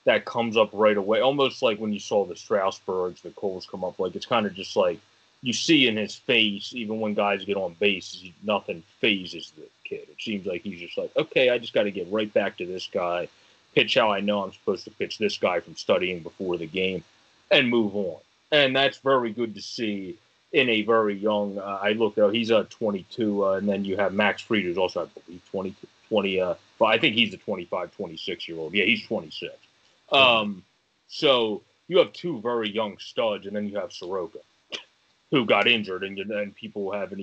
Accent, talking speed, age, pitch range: American, 220 wpm, 30-49, 95-115 Hz